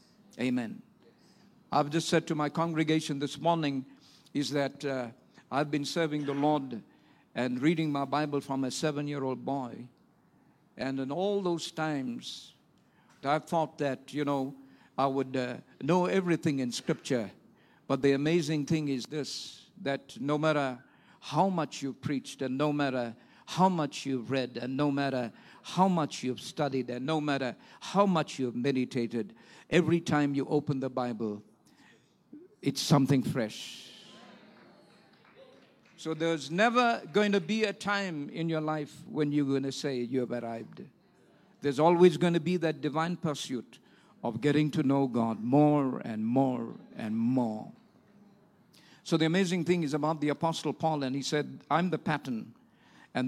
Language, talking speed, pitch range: English, 160 wpm, 135-165 Hz